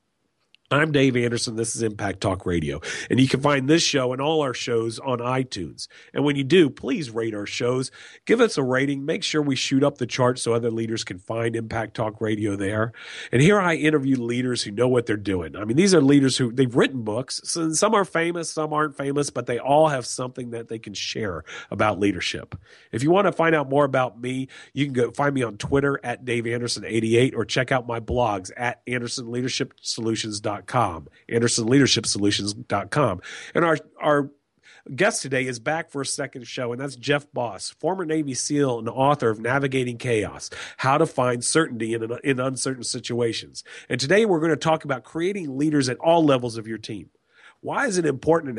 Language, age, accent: English, 40-59, American